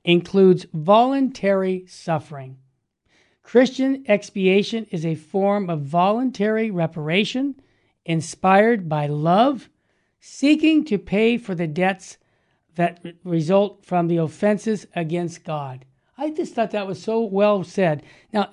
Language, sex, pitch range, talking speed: English, male, 175-220 Hz, 115 wpm